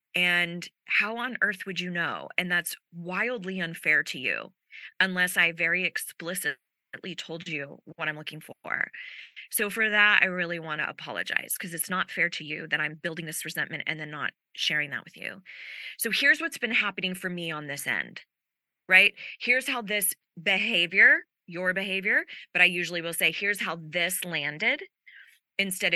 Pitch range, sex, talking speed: 165-205 Hz, female, 175 wpm